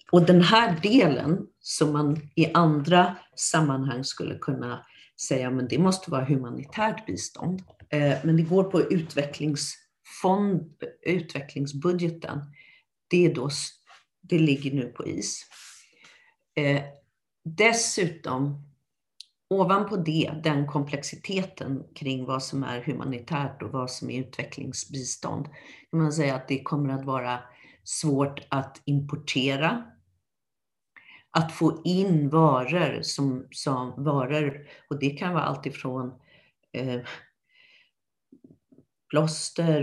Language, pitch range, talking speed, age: Swedish, 135-165 Hz, 110 wpm, 40-59